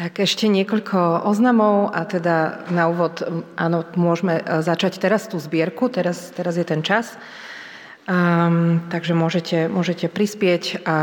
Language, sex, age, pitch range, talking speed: Slovak, female, 30-49, 165-200 Hz, 135 wpm